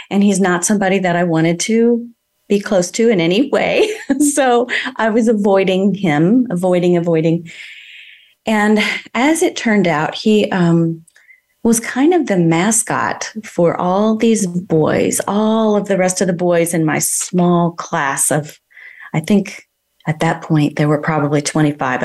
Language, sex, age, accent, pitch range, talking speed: English, female, 30-49, American, 170-220 Hz, 160 wpm